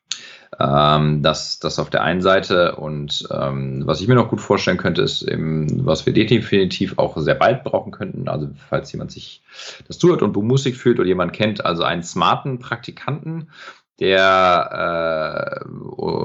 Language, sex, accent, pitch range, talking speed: German, male, German, 85-110 Hz, 160 wpm